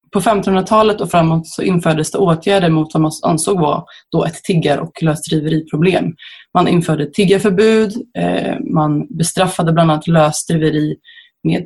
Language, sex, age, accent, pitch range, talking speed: Swedish, female, 20-39, native, 160-195 Hz, 135 wpm